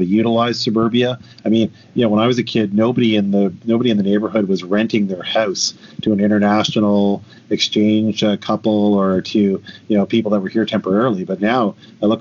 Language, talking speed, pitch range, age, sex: English, 200 wpm, 100-110 Hz, 40-59, male